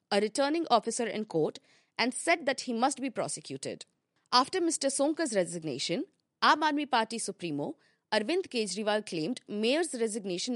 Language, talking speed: English, 140 wpm